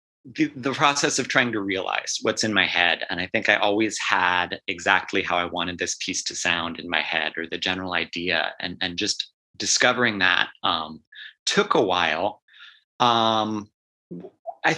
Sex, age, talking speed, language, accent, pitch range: male, 30-49, 175 wpm, English, American, 90-110 Hz